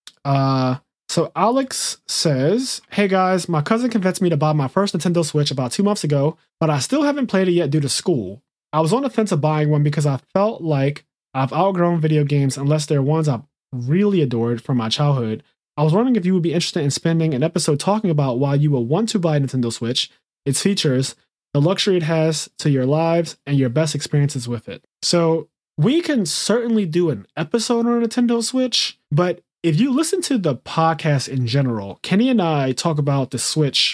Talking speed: 210 wpm